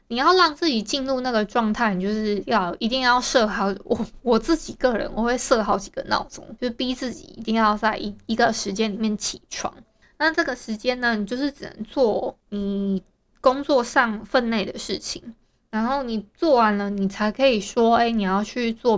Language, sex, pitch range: Chinese, female, 205-255 Hz